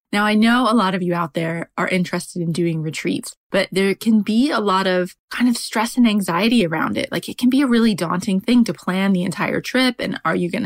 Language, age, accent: English, 20-39, American